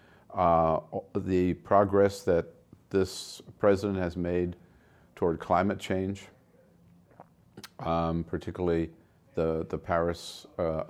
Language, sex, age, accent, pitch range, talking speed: English, male, 50-69, American, 85-100 Hz, 95 wpm